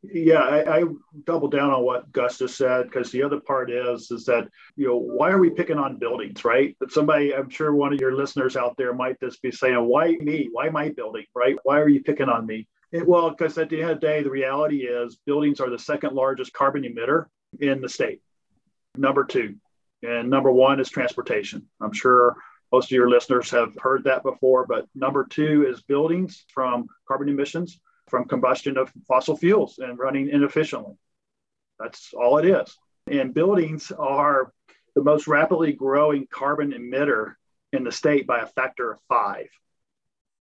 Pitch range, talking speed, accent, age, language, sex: 130-160 Hz, 190 wpm, American, 40-59, English, male